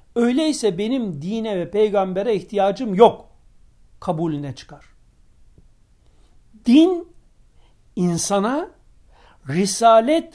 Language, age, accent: Turkish, 60-79, native